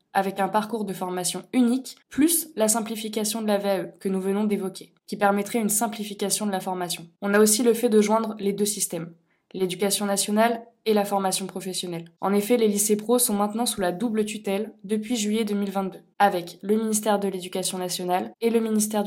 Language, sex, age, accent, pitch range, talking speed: French, female, 20-39, French, 195-225 Hz, 195 wpm